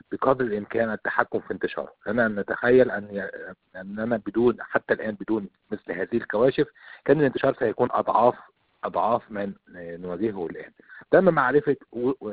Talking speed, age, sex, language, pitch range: 135 wpm, 50-69, male, Arabic, 100-125 Hz